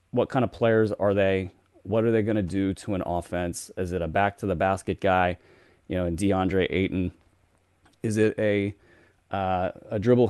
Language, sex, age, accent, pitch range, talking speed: English, male, 30-49, American, 95-110 Hz, 200 wpm